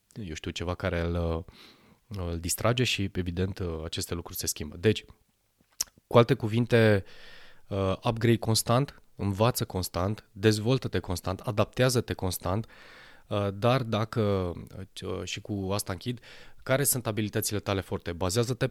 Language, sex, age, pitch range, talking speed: Romanian, male, 20-39, 90-110 Hz, 120 wpm